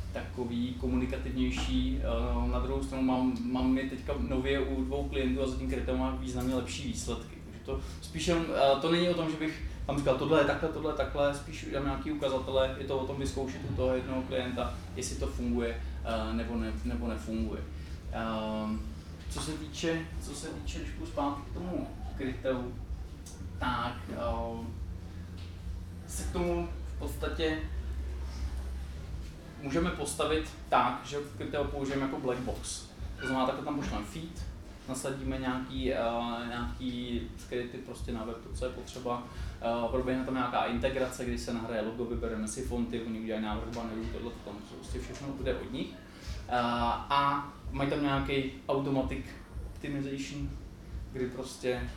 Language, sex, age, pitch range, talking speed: Czech, male, 20-39, 85-130 Hz, 150 wpm